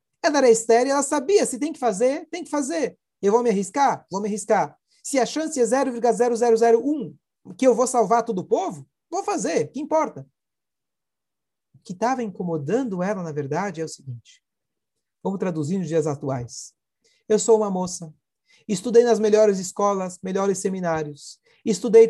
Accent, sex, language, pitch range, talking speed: Brazilian, male, Portuguese, 185-275 Hz, 165 wpm